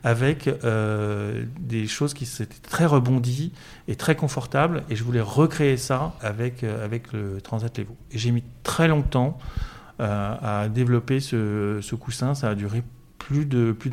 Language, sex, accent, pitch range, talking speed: French, male, French, 105-125 Hz, 170 wpm